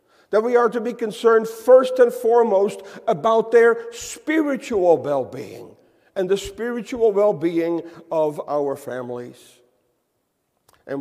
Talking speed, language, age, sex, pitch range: 115 wpm, English, 50-69, male, 180-265 Hz